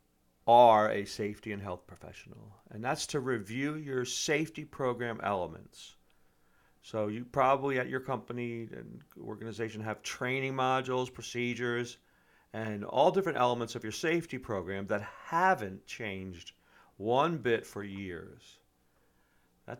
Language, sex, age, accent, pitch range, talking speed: English, male, 50-69, American, 105-140 Hz, 125 wpm